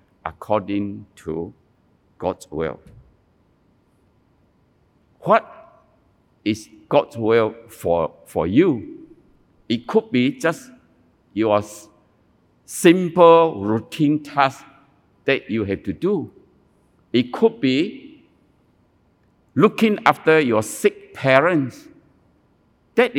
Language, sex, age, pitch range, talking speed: English, male, 60-79, 110-180 Hz, 85 wpm